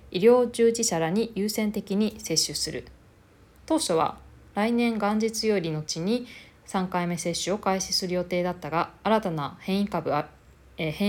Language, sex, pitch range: Japanese, female, 170-215 Hz